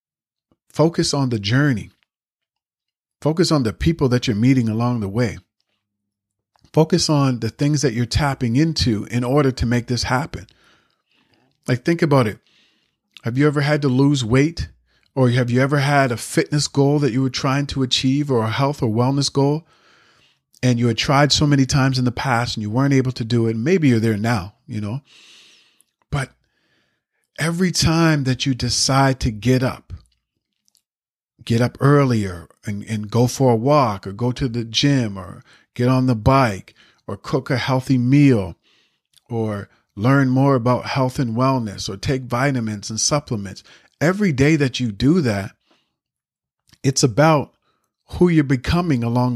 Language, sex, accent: English, male, American